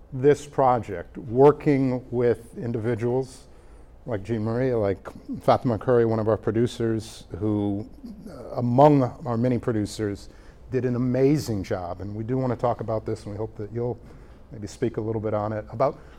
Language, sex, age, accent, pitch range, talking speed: English, male, 50-69, American, 110-135 Hz, 165 wpm